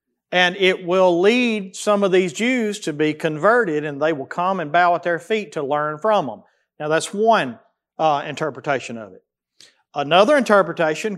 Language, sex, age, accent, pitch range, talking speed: English, male, 40-59, American, 170-225 Hz, 175 wpm